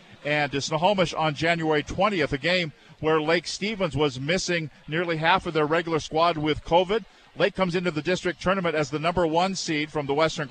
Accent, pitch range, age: American, 150-185 Hz, 50-69